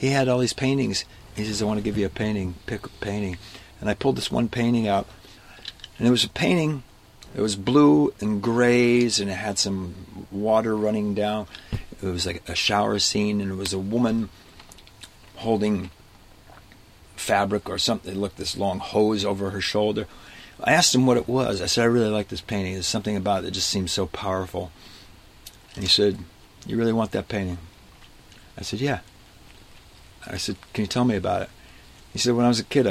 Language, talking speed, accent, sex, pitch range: English, 205 wpm, American, male, 95-110 Hz